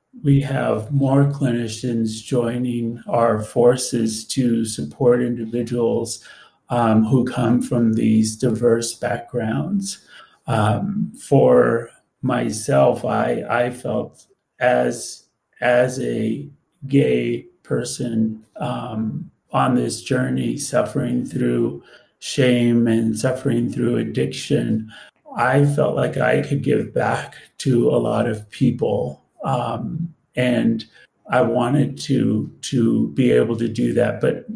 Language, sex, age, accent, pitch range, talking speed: English, male, 30-49, American, 110-130 Hz, 110 wpm